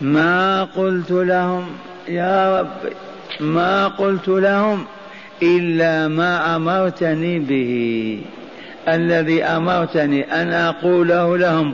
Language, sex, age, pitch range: Arabic, male, 50-69, 160-185 Hz